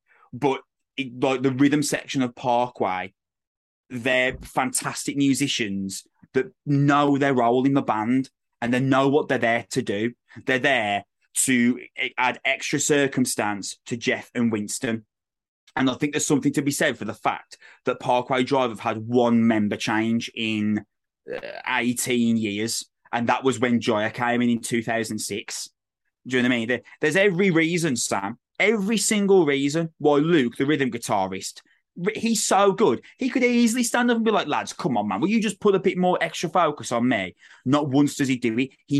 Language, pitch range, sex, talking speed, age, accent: English, 120-145 Hz, male, 180 wpm, 20-39, British